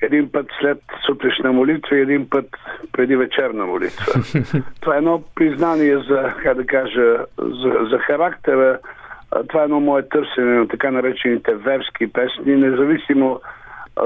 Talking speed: 140 wpm